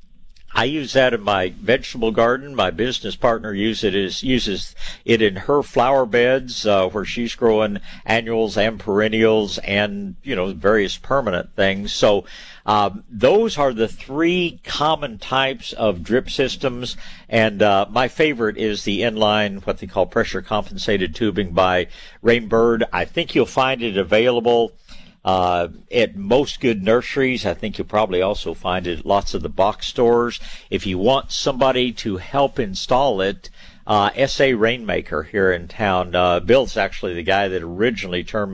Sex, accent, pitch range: male, American, 95-120 Hz